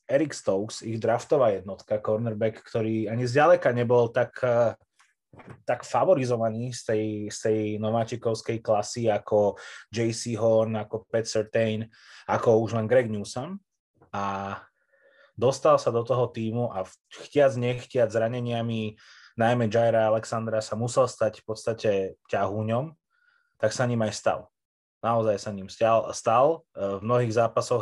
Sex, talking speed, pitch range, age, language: male, 135 wpm, 110-125 Hz, 20-39, Slovak